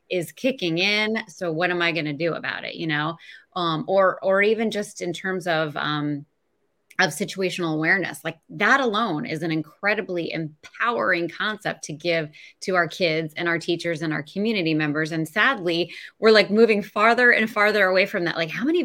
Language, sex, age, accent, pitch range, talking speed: English, female, 20-39, American, 160-205 Hz, 190 wpm